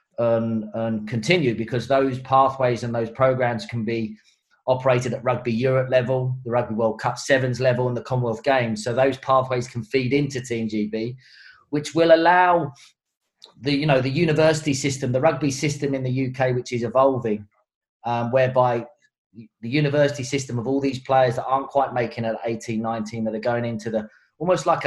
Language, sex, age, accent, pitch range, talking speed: English, male, 30-49, British, 115-135 Hz, 185 wpm